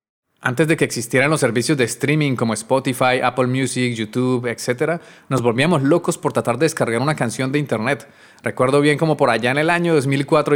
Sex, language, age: male, Spanish, 30-49